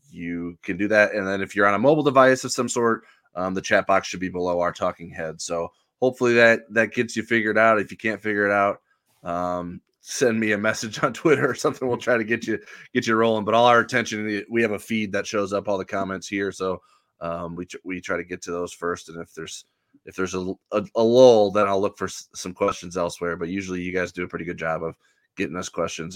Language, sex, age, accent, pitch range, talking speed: English, male, 20-39, American, 90-110 Hz, 255 wpm